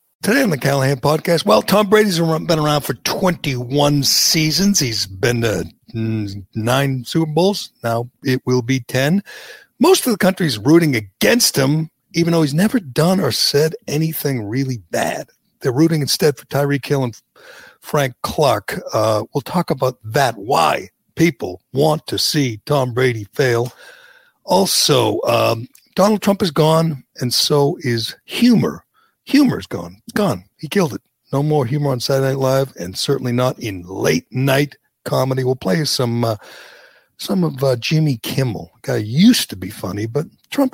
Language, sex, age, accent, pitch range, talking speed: English, male, 60-79, American, 125-175 Hz, 160 wpm